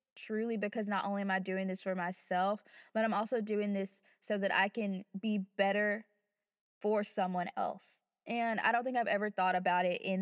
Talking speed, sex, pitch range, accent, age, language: 200 wpm, female, 195-235 Hz, American, 20-39, English